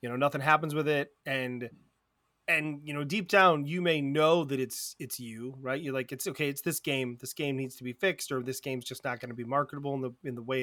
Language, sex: English, male